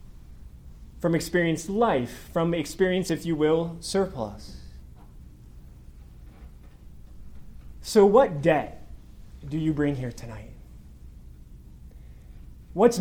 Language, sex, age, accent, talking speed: English, male, 30-49, American, 85 wpm